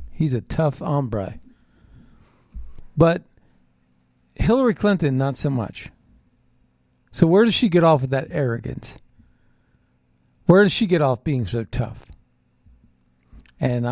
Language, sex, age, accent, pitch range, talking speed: English, male, 50-69, American, 115-155 Hz, 125 wpm